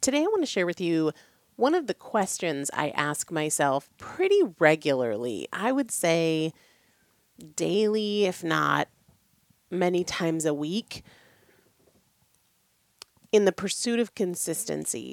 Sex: female